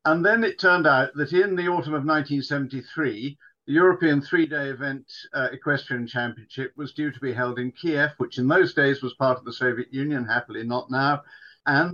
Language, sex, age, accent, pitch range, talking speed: English, male, 50-69, British, 125-155 Hz, 195 wpm